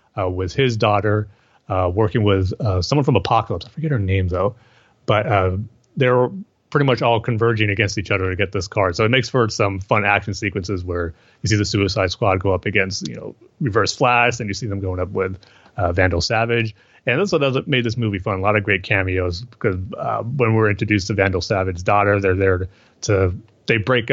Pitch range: 95-115 Hz